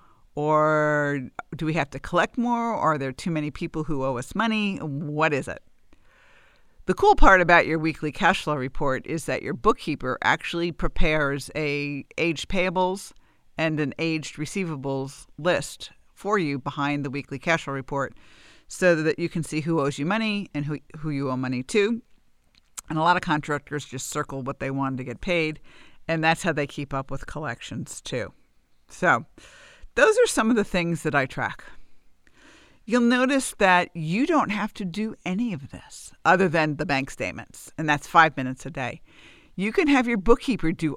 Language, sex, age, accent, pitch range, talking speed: English, female, 50-69, American, 145-190 Hz, 185 wpm